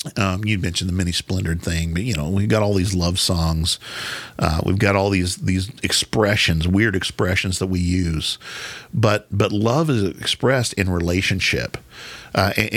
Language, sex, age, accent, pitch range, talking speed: English, male, 50-69, American, 90-115 Hz, 175 wpm